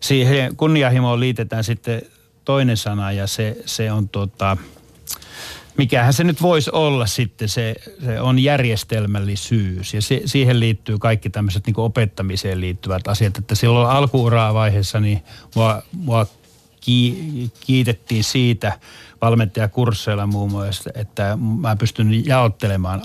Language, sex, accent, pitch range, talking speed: Finnish, male, native, 105-125 Hz, 110 wpm